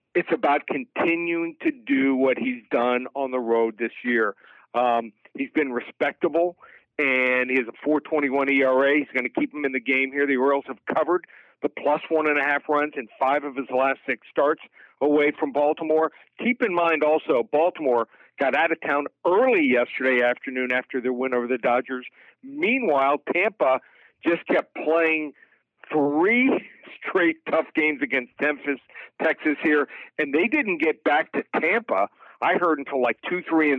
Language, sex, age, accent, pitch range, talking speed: English, male, 50-69, American, 130-160 Hz, 165 wpm